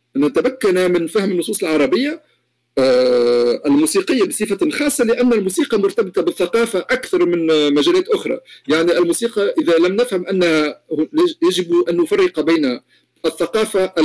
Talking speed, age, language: 115 wpm, 50-69, Arabic